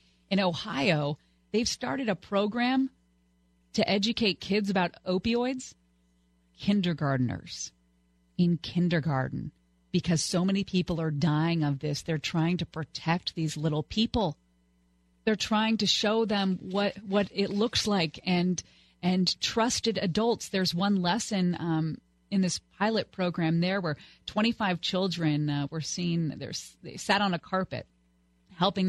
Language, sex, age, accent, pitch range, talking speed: English, female, 40-59, American, 145-195 Hz, 135 wpm